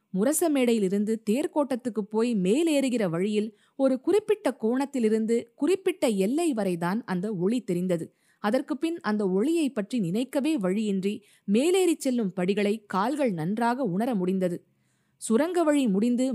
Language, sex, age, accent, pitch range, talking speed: Tamil, female, 20-39, native, 190-260 Hz, 115 wpm